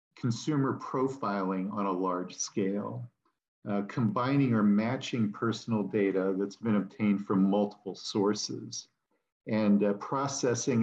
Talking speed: 115 wpm